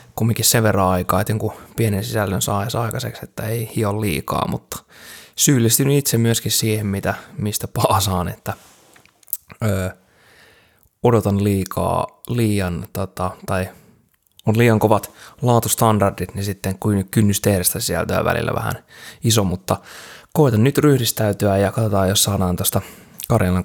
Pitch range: 95-110 Hz